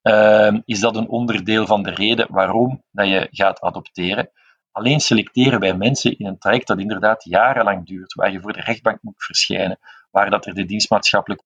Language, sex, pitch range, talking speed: Dutch, male, 95-115 Hz, 170 wpm